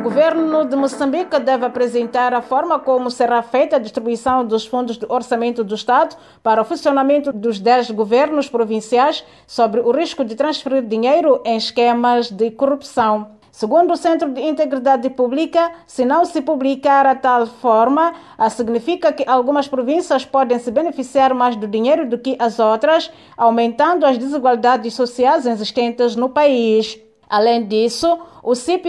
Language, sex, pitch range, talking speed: Portuguese, female, 235-290 Hz, 155 wpm